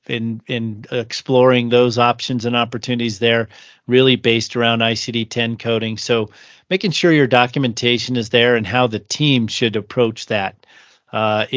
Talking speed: 145 wpm